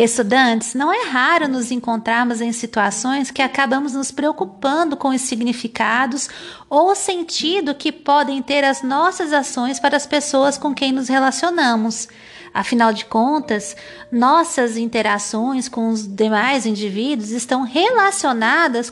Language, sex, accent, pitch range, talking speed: Portuguese, female, Brazilian, 235-315 Hz, 135 wpm